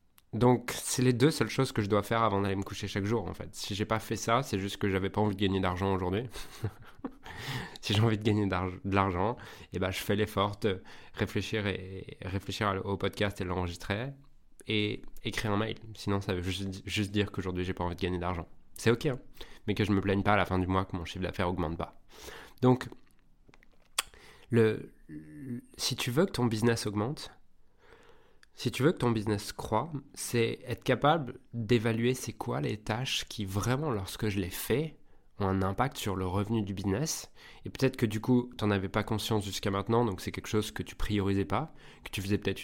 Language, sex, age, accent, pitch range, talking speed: French, male, 20-39, French, 95-120 Hz, 215 wpm